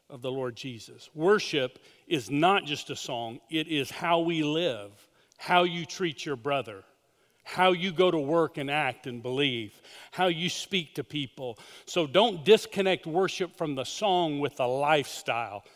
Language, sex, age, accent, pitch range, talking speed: English, male, 40-59, American, 145-180 Hz, 170 wpm